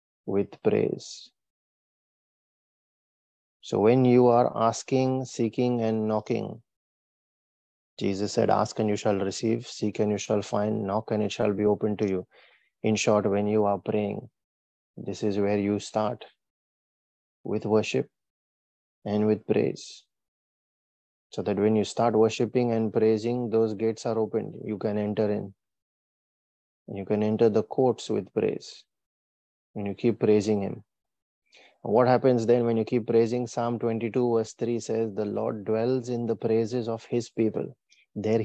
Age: 30-49